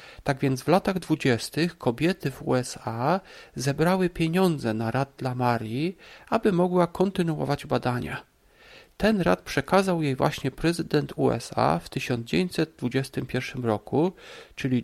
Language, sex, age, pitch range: Polish, male, 40-59, 125-170 Hz